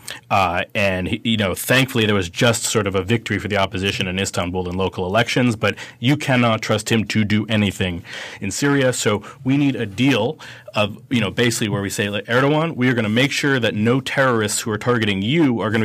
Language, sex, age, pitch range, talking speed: English, male, 30-49, 100-120 Hz, 220 wpm